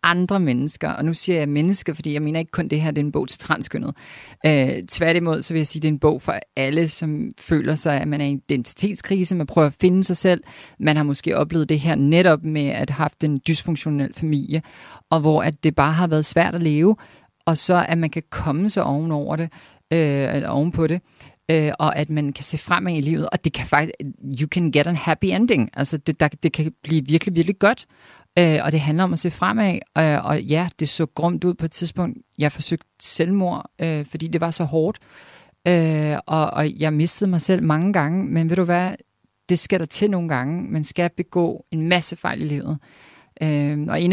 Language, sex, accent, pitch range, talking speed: Danish, female, native, 150-175 Hz, 225 wpm